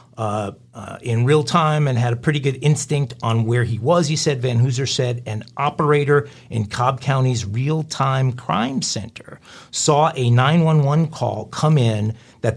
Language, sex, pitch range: English, male, 120-155 Hz